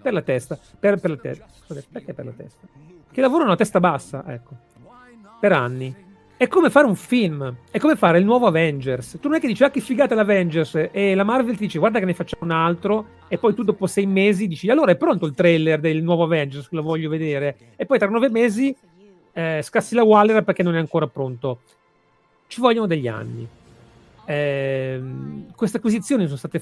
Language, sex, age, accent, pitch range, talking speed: Italian, male, 40-59, native, 145-200 Hz, 205 wpm